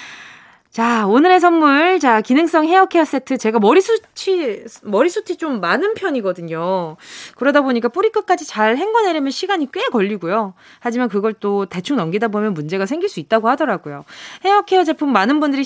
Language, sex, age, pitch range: Korean, female, 20-39, 200-315 Hz